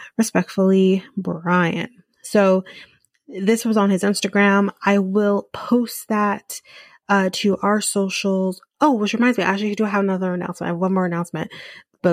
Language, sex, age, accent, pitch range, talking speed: English, female, 30-49, American, 185-215 Hz, 160 wpm